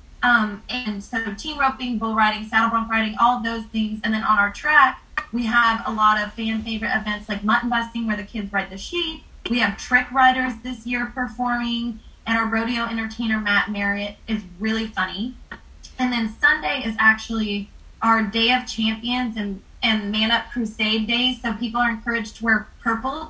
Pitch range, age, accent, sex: 215-240 Hz, 20-39, American, female